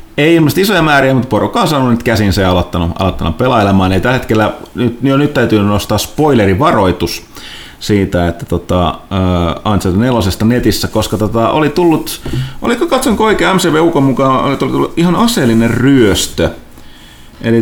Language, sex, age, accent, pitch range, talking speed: Finnish, male, 30-49, native, 95-125 Hz, 155 wpm